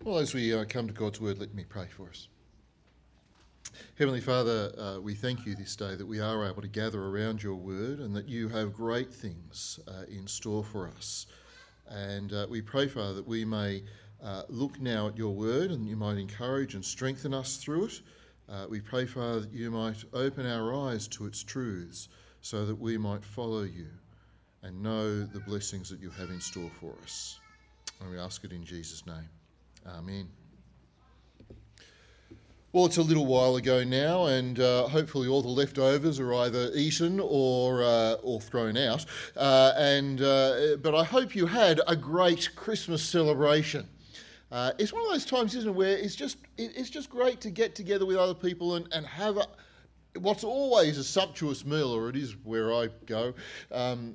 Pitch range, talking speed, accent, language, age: 105-140 Hz, 190 wpm, Australian, English, 40-59